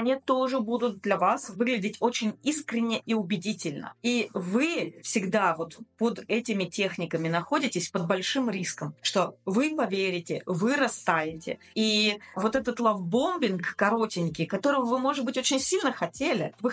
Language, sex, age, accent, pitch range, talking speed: Russian, female, 30-49, native, 205-265 Hz, 140 wpm